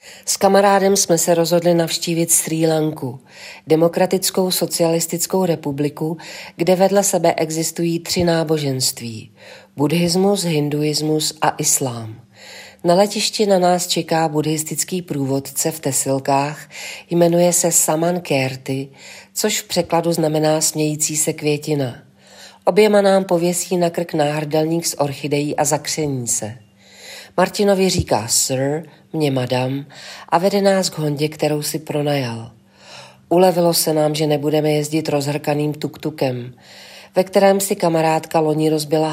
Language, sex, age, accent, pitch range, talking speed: Czech, female, 40-59, native, 150-170 Hz, 120 wpm